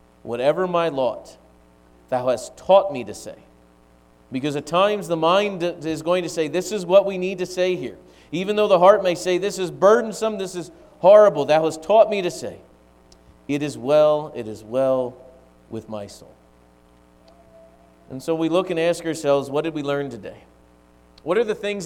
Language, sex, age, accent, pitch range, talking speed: English, male, 40-59, American, 110-175 Hz, 190 wpm